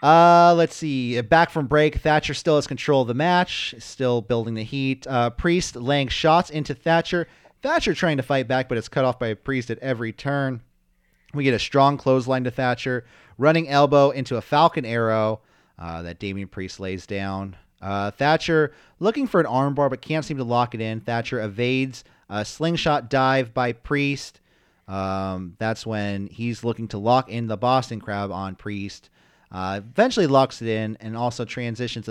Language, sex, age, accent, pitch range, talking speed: English, male, 30-49, American, 110-145 Hz, 185 wpm